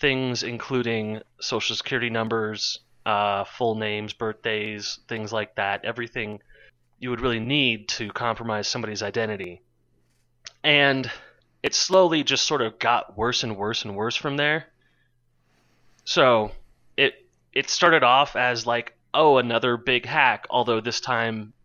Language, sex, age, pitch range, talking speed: English, male, 30-49, 110-130 Hz, 135 wpm